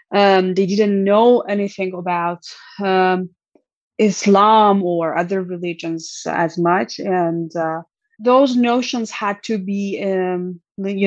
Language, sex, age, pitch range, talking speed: English, female, 20-39, 175-215 Hz, 125 wpm